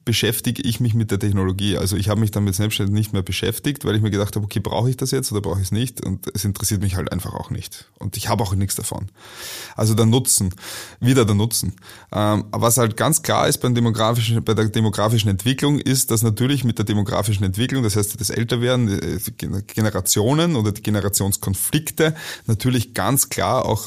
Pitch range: 105-125 Hz